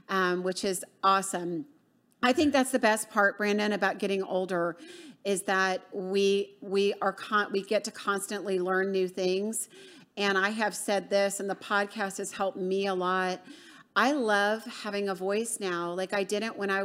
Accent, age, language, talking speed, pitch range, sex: American, 40-59, English, 185 wpm, 195-225 Hz, female